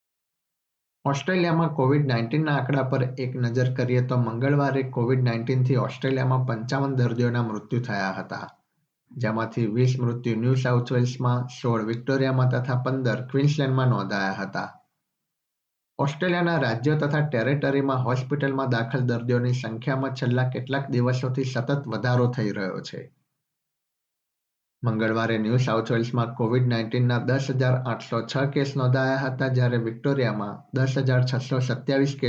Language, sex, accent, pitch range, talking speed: Gujarati, male, native, 120-140 Hz, 115 wpm